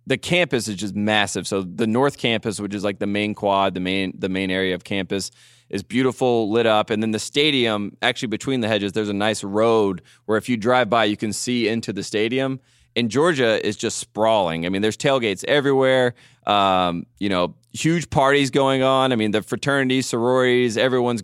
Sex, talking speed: male, 205 wpm